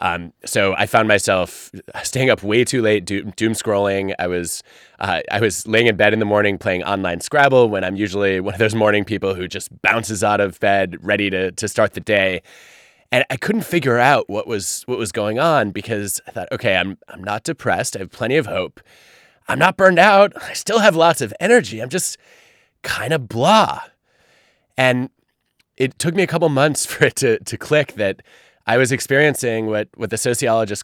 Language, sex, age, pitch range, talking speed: English, male, 20-39, 105-140 Hz, 205 wpm